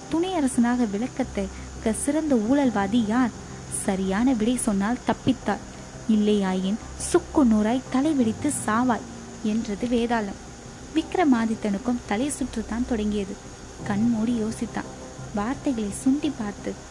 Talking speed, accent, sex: 90 wpm, native, female